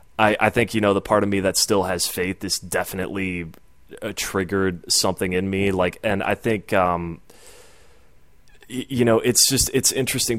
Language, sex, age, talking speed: English, male, 20-39, 185 wpm